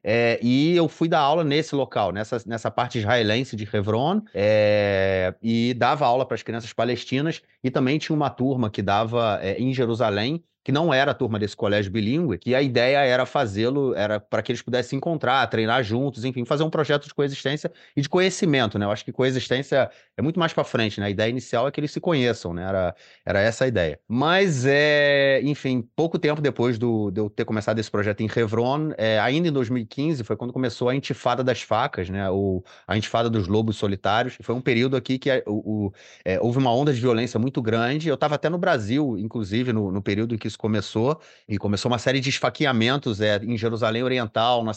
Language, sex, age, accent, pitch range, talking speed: Portuguese, male, 30-49, Brazilian, 110-135 Hz, 215 wpm